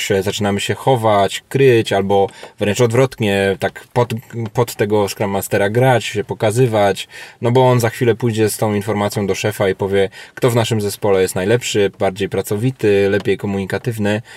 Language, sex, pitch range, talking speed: Polish, male, 100-120 Hz, 165 wpm